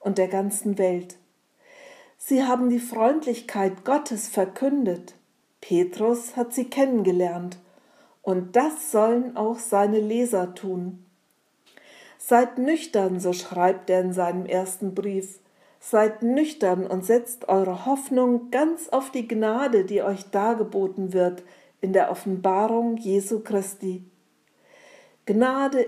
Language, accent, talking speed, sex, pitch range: German, German, 115 wpm, female, 185-240 Hz